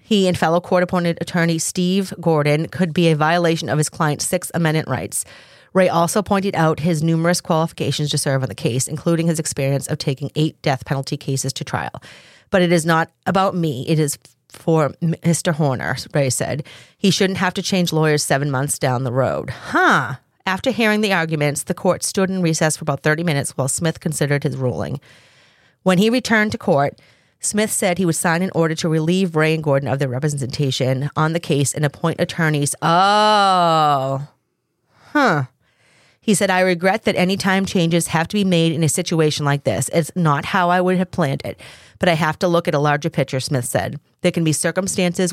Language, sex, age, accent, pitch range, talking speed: English, female, 30-49, American, 145-180 Hz, 200 wpm